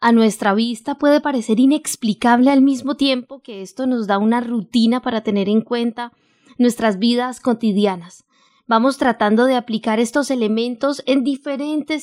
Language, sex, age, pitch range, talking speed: Spanish, female, 20-39, 220-270 Hz, 150 wpm